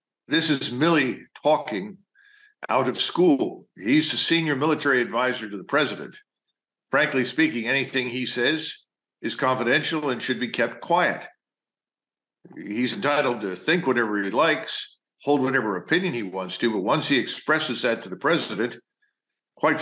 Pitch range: 115-155 Hz